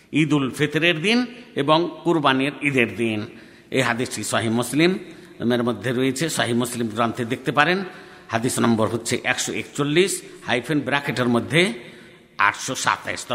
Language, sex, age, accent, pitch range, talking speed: Bengali, male, 60-79, native, 115-150 Hz, 120 wpm